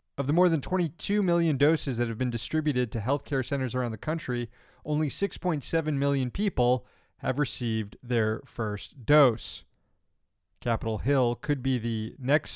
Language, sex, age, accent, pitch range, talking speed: English, male, 30-49, American, 120-150 Hz, 155 wpm